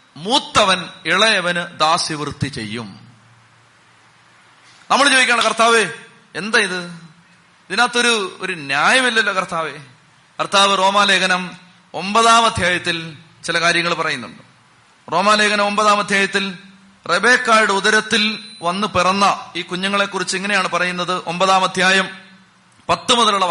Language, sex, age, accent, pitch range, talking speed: Malayalam, male, 30-49, native, 180-215 Hz, 90 wpm